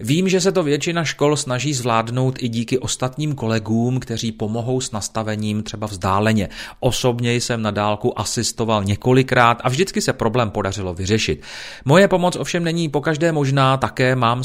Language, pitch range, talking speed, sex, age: Czech, 110-135 Hz, 160 wpm, male, 30-49